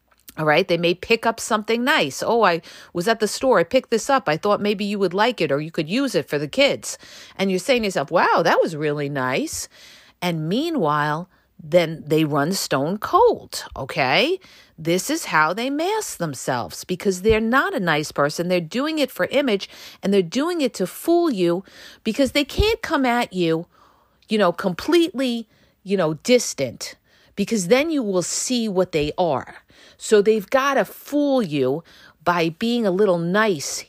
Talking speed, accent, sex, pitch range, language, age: 190 wpm, American, female, 160-240 Hz, English, 40-59